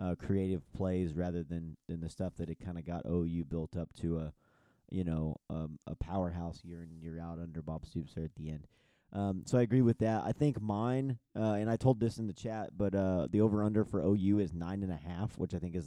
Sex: male